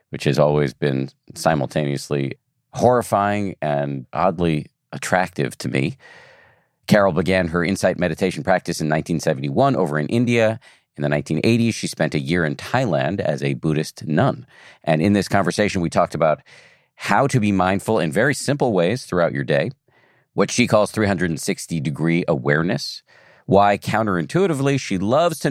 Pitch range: 80-105 Hz